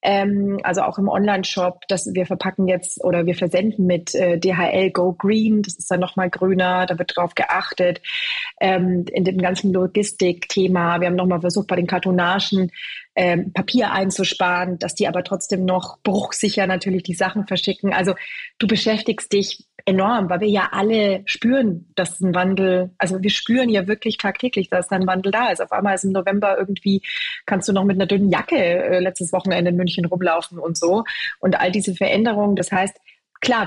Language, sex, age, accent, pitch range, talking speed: German, female, 30-49, German, 180-205 Hz, 180 wpm